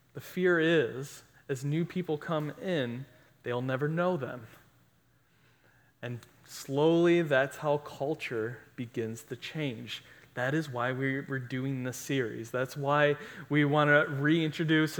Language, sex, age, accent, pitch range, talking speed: English, male, 30-49, American, 130-155 Hz, 130 wpm